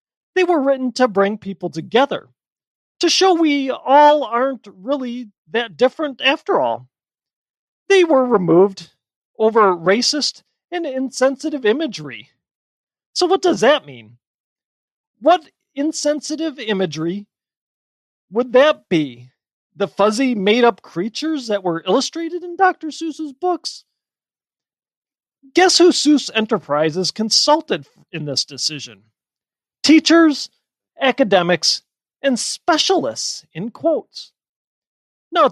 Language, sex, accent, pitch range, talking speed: English, male, American, 180-300 Hz, 105 wpm